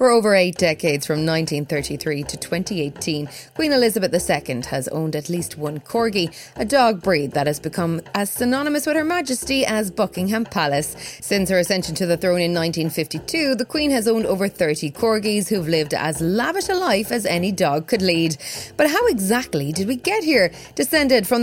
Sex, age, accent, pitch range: female, 30-49, Irish, 160-230 Hz